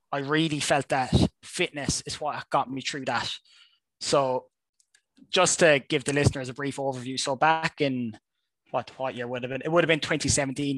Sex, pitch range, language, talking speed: male, 130-155 Hz, English, 190 wpm